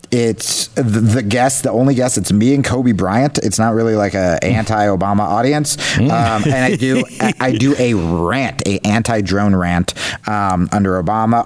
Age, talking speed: 30-49, 185 wpm